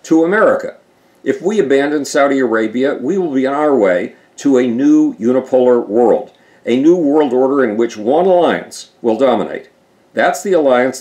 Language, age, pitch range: English, 50-69, 115-155 Hz